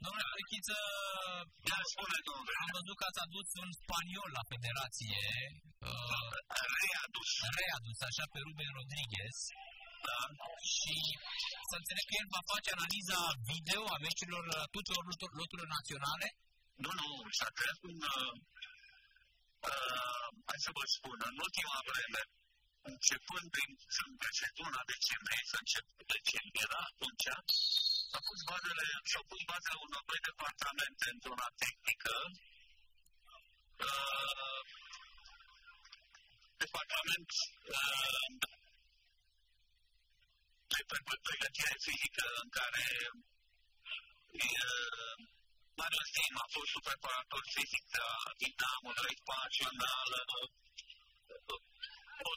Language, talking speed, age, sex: Romanian, 100 wpm, 50-69, male